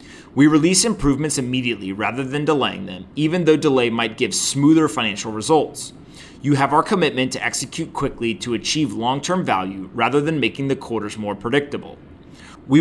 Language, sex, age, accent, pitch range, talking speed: English, male, 30-49, American, 115-155 Hz, 165 wpm